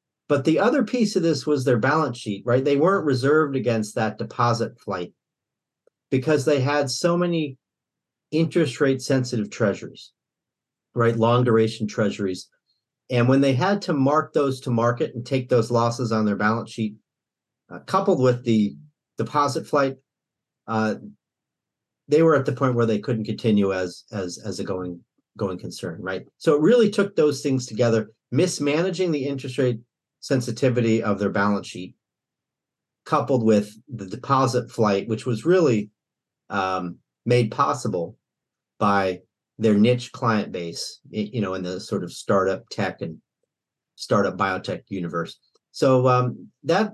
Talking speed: 150 wpm